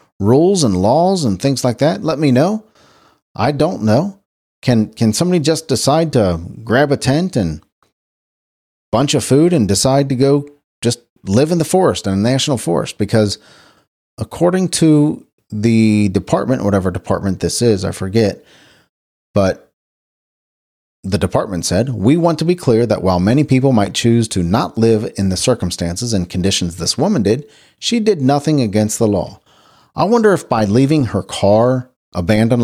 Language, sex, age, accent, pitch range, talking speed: English, male, 40-59, American, 95-140 Hz, 165 wpm